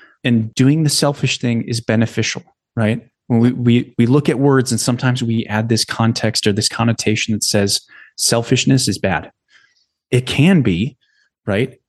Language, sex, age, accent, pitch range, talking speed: English, male, 30-49, American, 115-140 Hz, 165 wpm